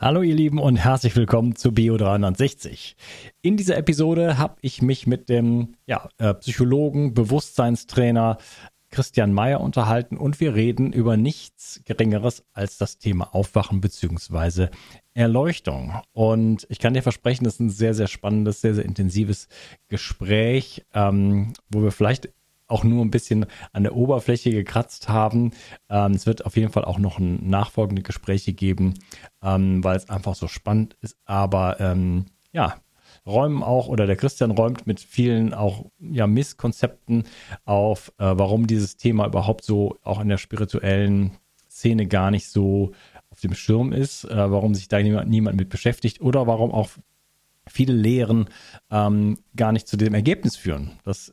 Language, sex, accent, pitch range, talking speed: German, male, German, 100-120 Hz, 160 wpm